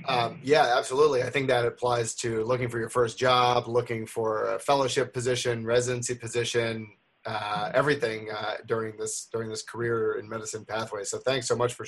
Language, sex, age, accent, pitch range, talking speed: English, male, 30-49, American, 115-130 Hz, 175 wpm